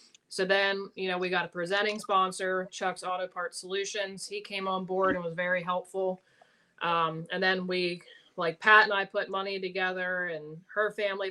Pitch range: 180-205 Hz